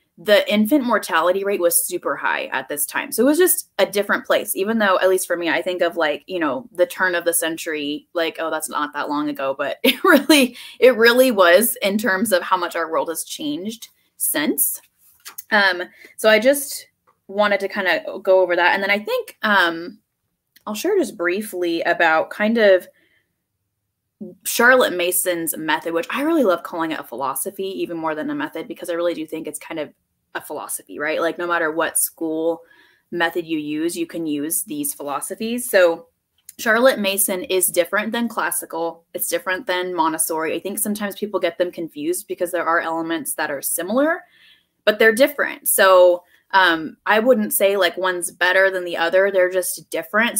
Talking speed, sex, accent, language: 190 wpm, female, American, English